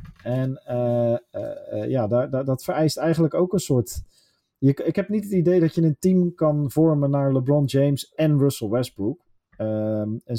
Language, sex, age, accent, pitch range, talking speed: Dutch, male, 40-59, Dutch, 115-150 Hz, 175 wpm